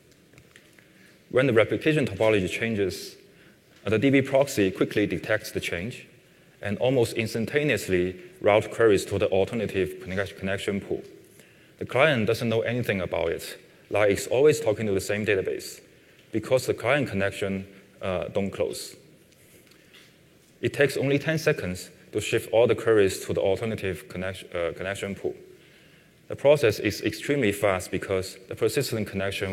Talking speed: 140 wpm